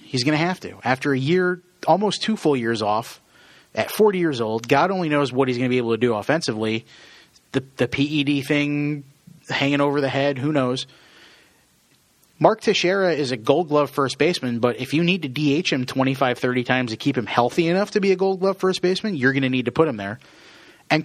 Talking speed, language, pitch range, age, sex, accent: 215 wpm, English, 120-155 Hz, 30-49, male, American